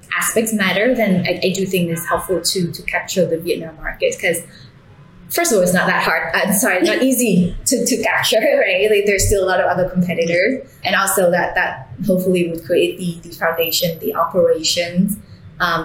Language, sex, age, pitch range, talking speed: English, female, 20-39, 165-210 Hz, 195 wpm